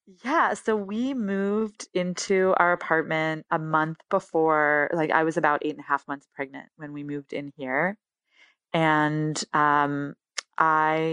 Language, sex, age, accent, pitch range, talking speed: English, female, 20-39, American, 150-175 Hz, 150 wpm